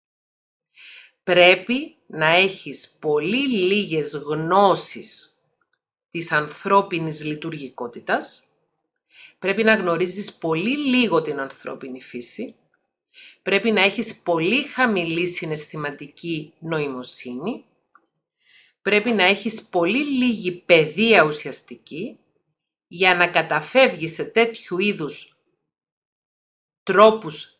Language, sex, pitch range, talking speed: Greek, female, 150-220 Hz, 85 wpm